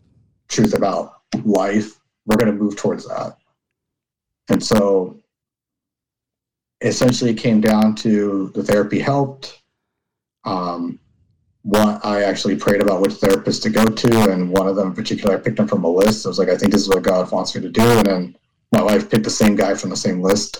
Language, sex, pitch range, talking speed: English, male, 95-115 Hz, 195 wpm